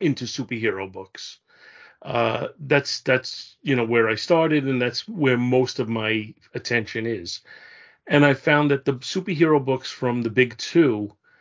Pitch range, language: 120-145 Hz, English